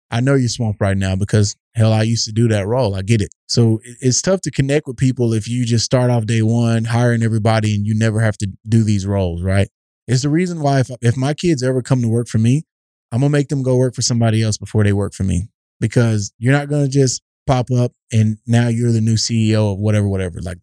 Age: 20-39